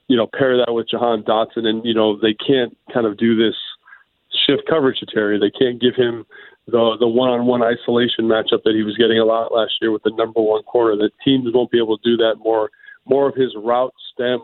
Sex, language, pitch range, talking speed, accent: male, English, 115-125 Hz, 235 wpm, American